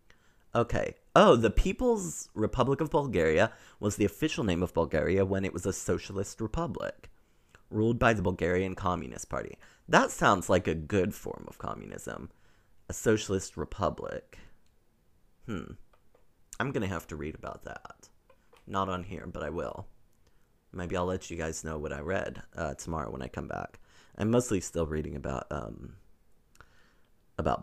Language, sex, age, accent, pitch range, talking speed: English, male, 30-49, American, 80-105 Hz, 160 wpm